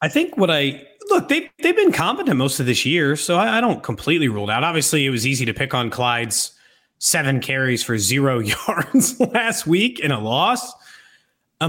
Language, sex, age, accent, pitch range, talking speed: English, male, 30-49, American, 115-180 Hz, 205 wpm